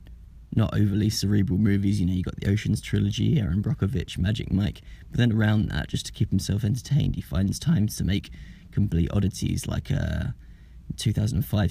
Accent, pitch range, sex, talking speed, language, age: British, 90-110 Hz, male, 180 wpm, English, 20-39